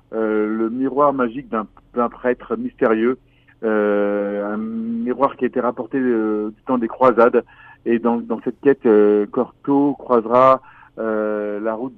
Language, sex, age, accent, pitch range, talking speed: French, male, 40-59, French, 120-155 Hz, 155 wpm